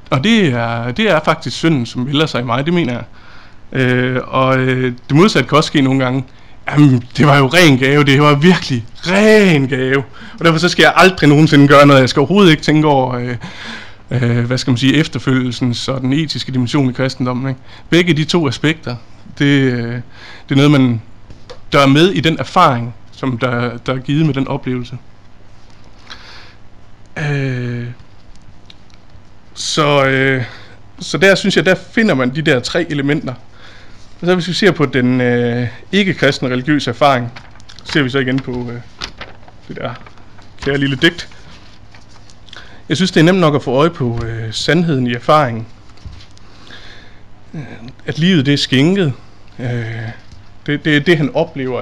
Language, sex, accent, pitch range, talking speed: Danish, male, native, 115-150 Hz, 165 wpm